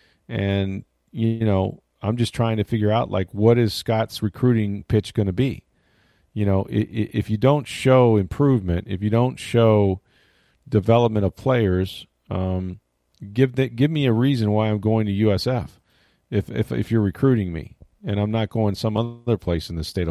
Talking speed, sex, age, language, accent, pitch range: 180 wpm, male, 40-59, English, American, 100-115 Hz